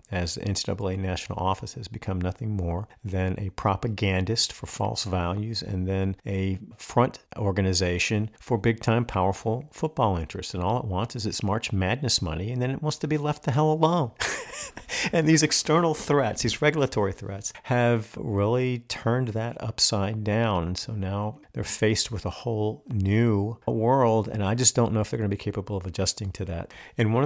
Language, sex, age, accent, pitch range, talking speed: English, male, 50-69, American, 95-115 Hz, 185 wpm